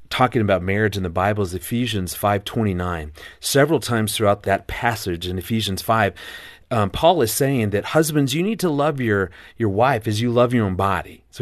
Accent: American